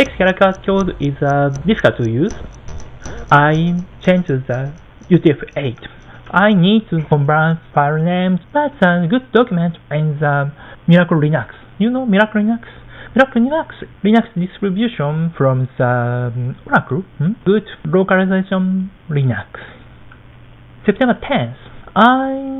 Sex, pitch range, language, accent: male, 145-205 Hz, Japanese, native